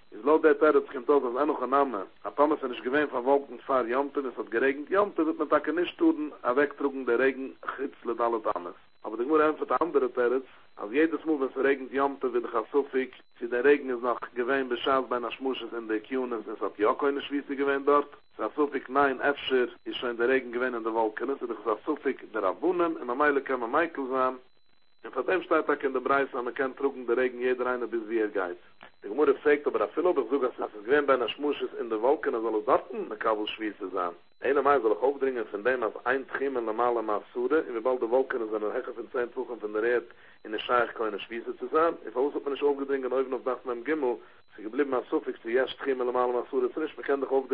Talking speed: 200 wpm